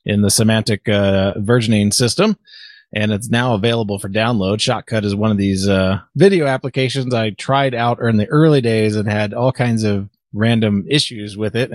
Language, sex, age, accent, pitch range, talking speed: English, male, 30-49, American, 105-140 Hz, 185 wpm